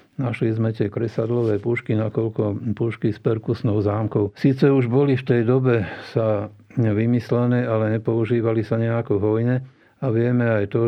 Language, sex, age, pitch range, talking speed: Slovak, male, 50-69, 105-120 Hz, 155 wpm